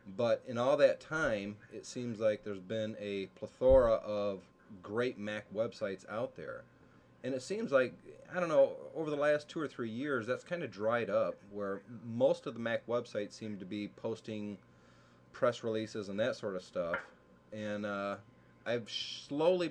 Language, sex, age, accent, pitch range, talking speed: English, male, 30-49, American, 100-135 Hz, 175 wpm